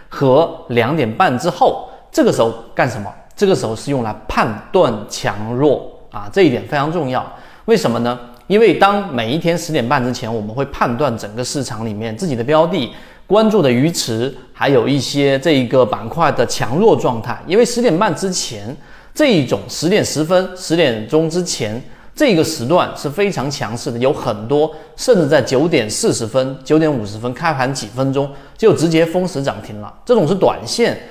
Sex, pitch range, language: male, 120-160 Hz, Chinese